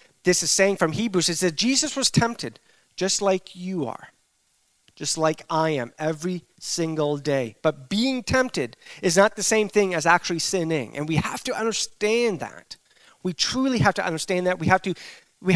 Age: 30-49